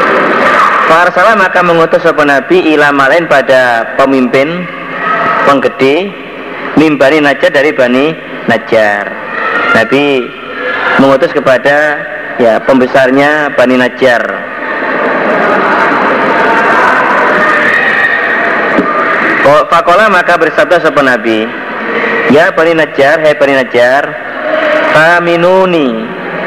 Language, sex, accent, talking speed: Indonesian, male, native, 80 wpm